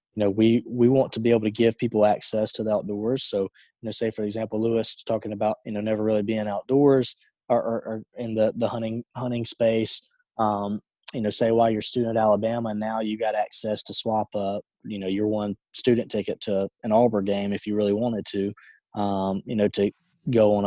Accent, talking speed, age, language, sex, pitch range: American, 225 wpm, 20-39, English, male, 105-120 Hz